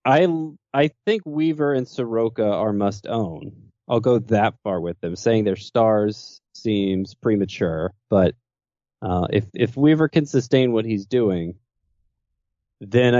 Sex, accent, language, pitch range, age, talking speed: male, American, English, 95-125 Hz, 20-39, 140 wpm